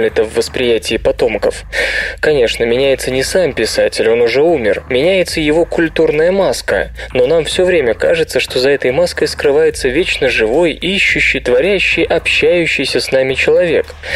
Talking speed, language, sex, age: 145 wpm, Russian, male, 20-39